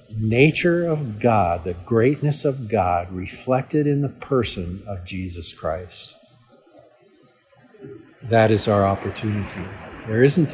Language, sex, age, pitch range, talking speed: English, male, 50-69, 100-120 Hz, 115 wpm